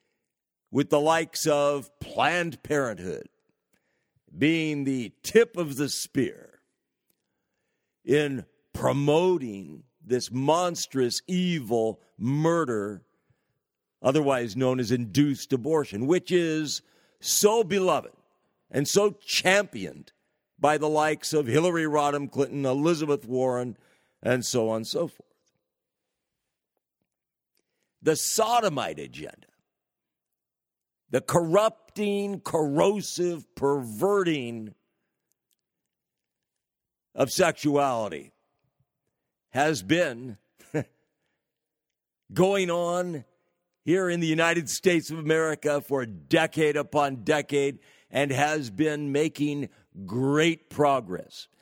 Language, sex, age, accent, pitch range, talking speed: English, male, 60-79, American, 130-170 Hz, 85 wpm